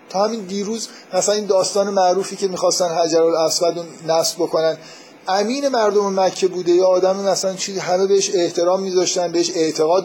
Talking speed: 160 wpm